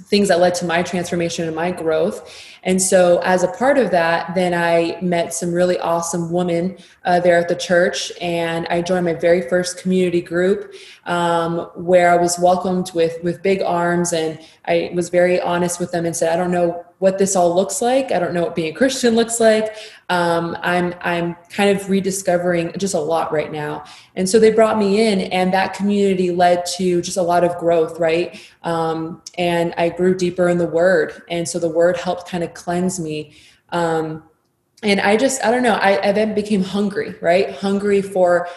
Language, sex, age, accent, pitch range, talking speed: English, female, 20-39, American, 170-185 Hz, 205 wpm